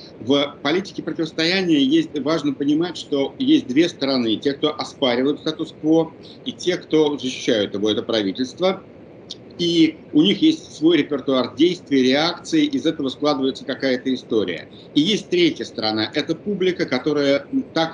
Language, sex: Russian, male